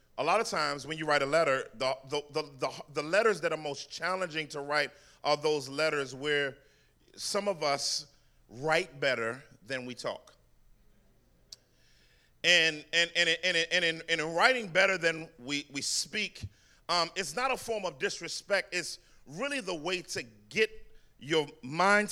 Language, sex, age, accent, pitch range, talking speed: English, male, 40-59, American, 145-190 Hz, 170 wpm